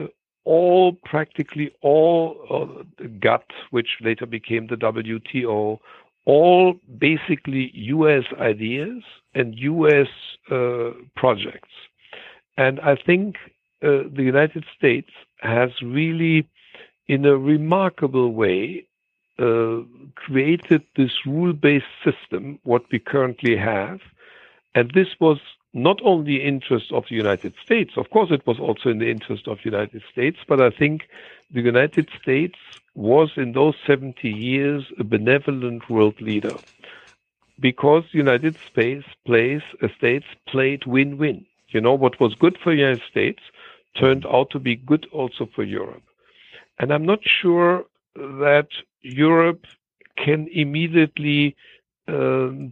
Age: 60-79